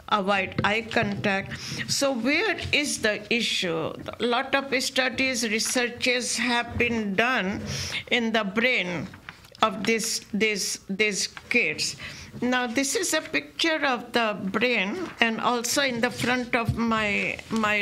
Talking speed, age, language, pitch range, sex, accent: 135 wpm, 60-79, English, 215-250 Hz, female, Indian